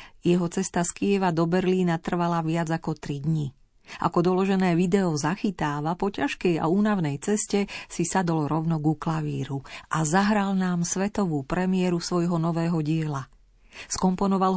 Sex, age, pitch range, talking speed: female, 40-59, 150-190 Hz, 140 wpm